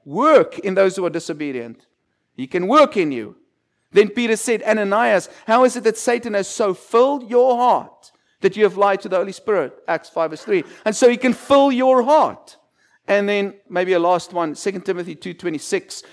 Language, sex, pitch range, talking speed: English, male, 190-255 Hz, 195 wpm